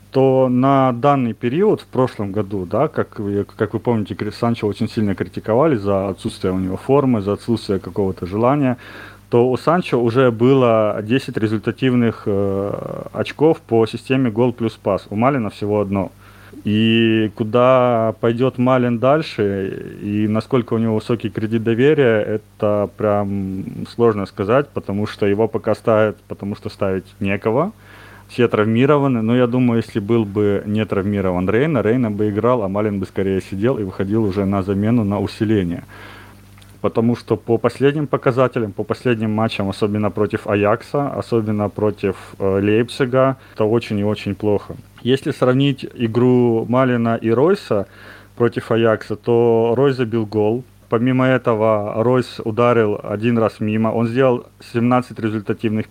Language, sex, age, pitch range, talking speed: Russian, male, 30-49, 105-120 Hz, 145 wpm